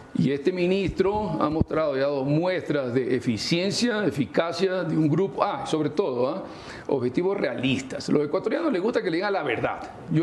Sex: male